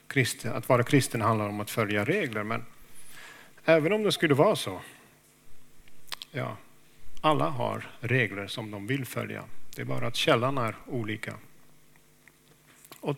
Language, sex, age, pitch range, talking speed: Swedish, male, 50-69, 110-140 Hz, 135 wpm